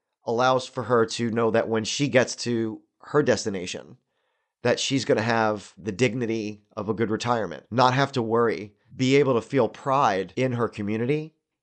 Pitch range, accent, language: 110-130 Hz, American, English